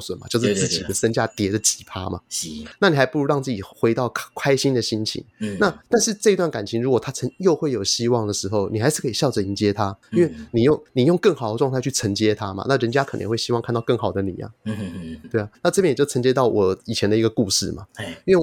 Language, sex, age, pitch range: Chinese, male, 20-39, 105-135 Hz